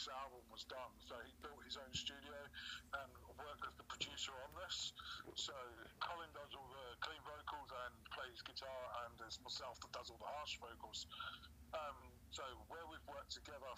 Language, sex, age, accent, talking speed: English, male, 50-69, British, 180 wpm